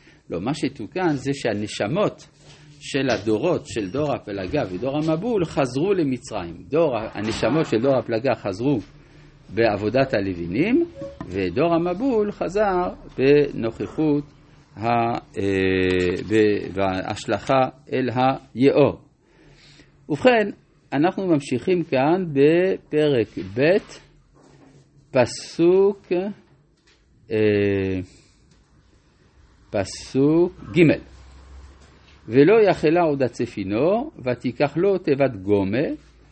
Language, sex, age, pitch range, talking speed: Hebrew, male, 50-69, 115-160 Hz, 80 wpm